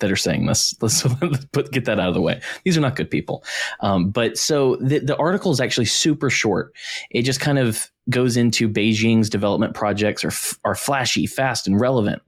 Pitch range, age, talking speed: 100-130 Hz, 20-39, 205 wpm